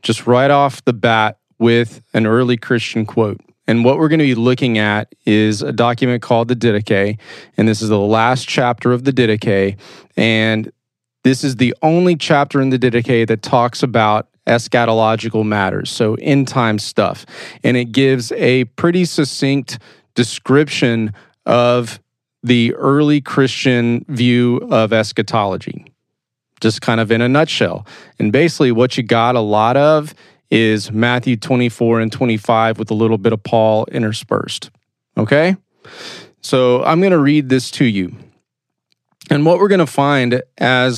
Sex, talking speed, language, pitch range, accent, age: male, 150 wpm, English, 115-135 Hz, American, 30-49